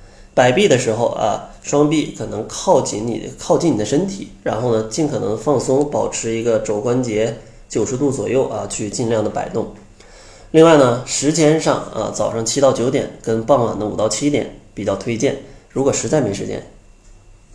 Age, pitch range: 20-39, 105-135 Hz